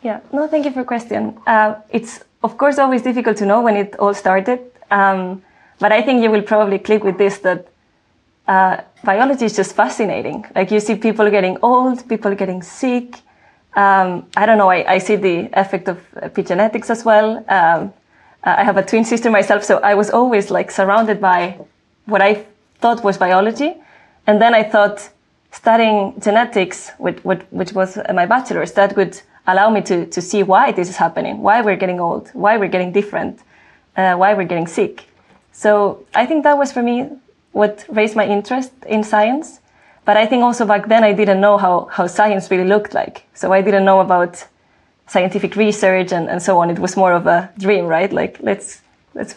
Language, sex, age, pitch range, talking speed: English, female, 20-39, 190-220 Hz, 195 wpm